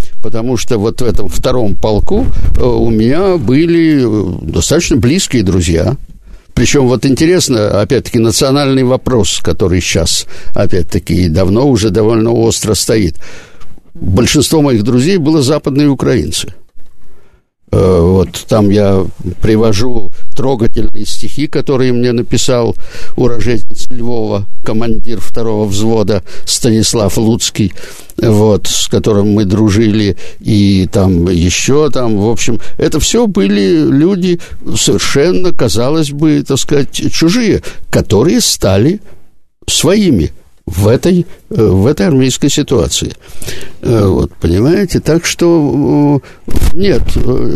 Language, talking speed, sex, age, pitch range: Russian, 105 wpm, male, 60-79, 105-140 Hz